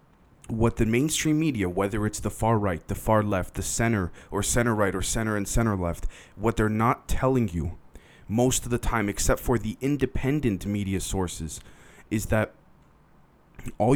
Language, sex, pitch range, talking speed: English, male, 100-125 Hz, 170 wpm